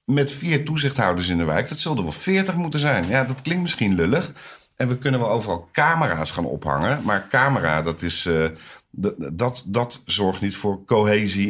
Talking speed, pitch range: 195 wpm, 80-105 Hz